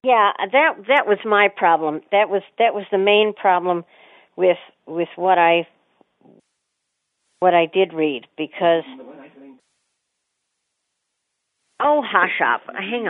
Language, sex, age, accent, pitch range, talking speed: English, female, 50-69, American, 175-230 Hz, 120 wpm